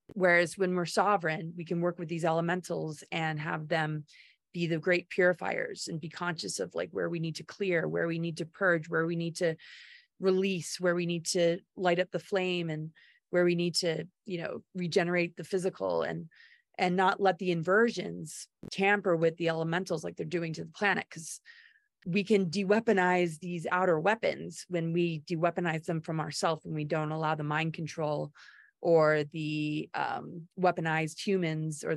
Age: 30-49